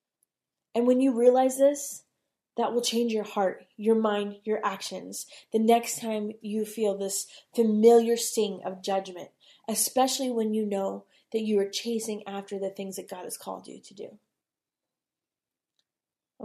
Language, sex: English, female